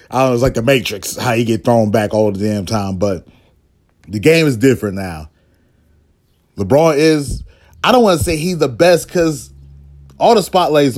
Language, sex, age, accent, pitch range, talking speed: English, male, 30-49, American, 105-135 Hz, 195 wpm